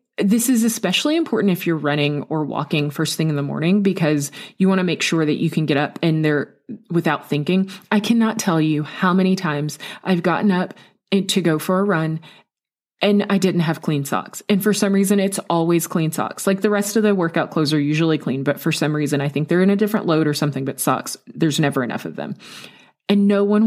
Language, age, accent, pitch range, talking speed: English, 30-49, American, 170-225 Hz, 230 wpm